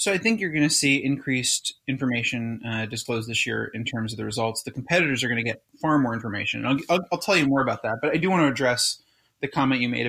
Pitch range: 120-145 Hz